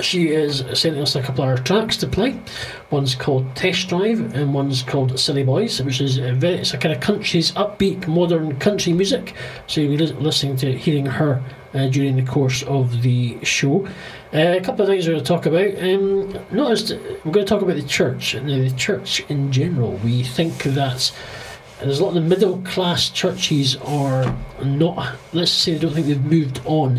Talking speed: 210 wpm